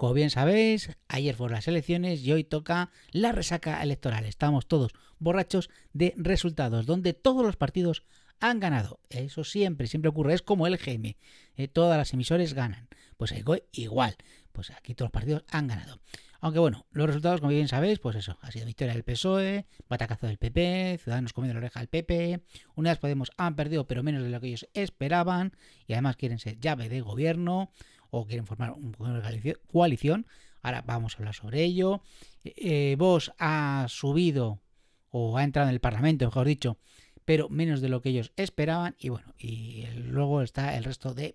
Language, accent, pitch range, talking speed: Spanish, Spanish, 120-165 Hz, 185 wpm